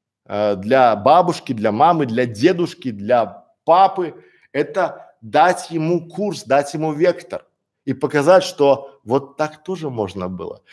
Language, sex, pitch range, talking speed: Russian, male, 140-185 Hz, 130 wpm